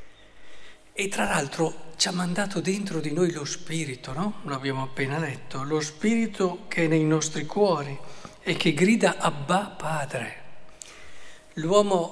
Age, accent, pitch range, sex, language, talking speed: 50-69, native, 145-180 Hz, male, Italian, 140 wpm